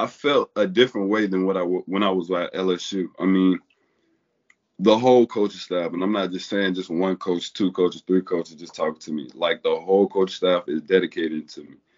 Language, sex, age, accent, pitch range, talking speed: English, male, 20-39, American, 90-115 Hz, 225 wpm